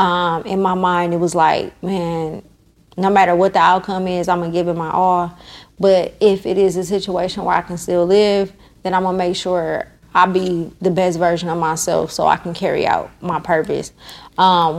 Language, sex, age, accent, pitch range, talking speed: English, female, 20-39, American, 170-190 Hz, 215 wpm